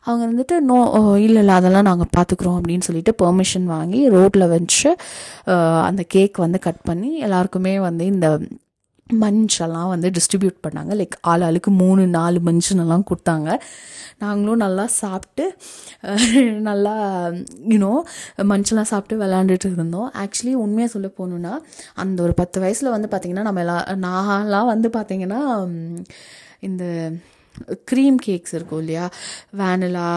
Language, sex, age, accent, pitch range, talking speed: Tamil, female, 20-39, native, 180-215 Hz, 120 wpm